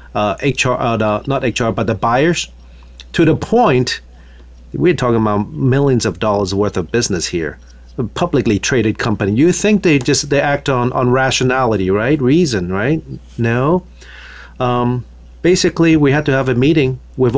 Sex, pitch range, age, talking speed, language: male, 105-135 Hz, 40-59, 160 wpm, English